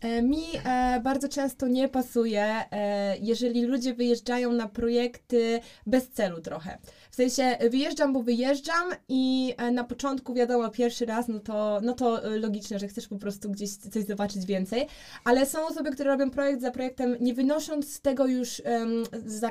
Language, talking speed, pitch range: Polish, 155 wpm, 235-275 Hz